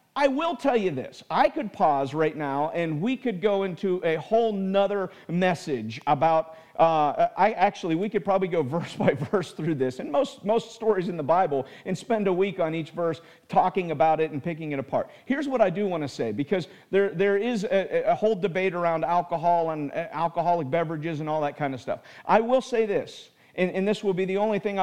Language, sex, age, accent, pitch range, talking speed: English, male, 50-69, American, 160-205 Hz, 220 wpm